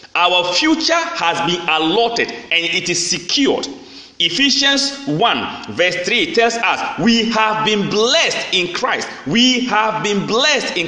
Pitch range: 175-260 Hz